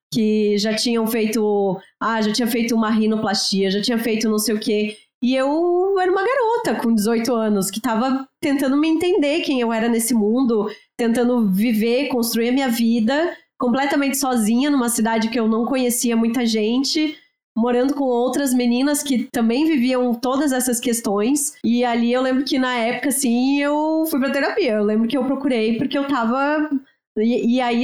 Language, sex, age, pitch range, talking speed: Portuguese, female, 20-39, 225-285 Hz, 180 wpm